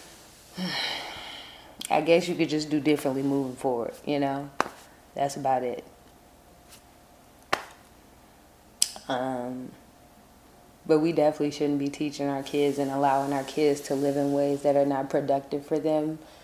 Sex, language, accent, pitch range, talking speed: female, English, American, 140-155 Hz, 135 wpm